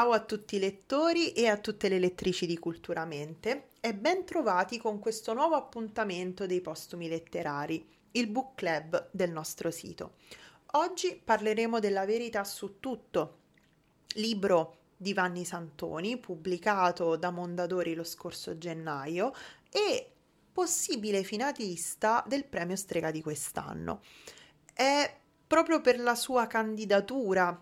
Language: Italian